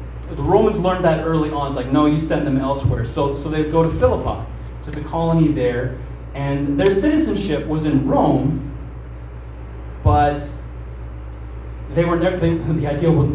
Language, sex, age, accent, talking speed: English, male, 30-49, American, 155 wpm